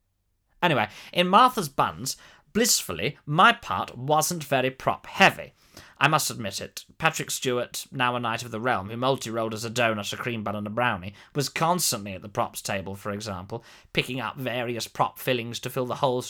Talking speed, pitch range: 185 wpm, 120-160 Hz